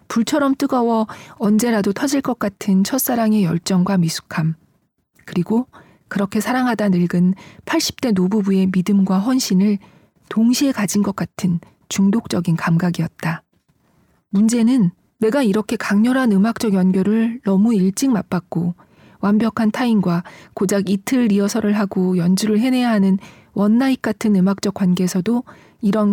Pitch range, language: 185-235 Hz, Korean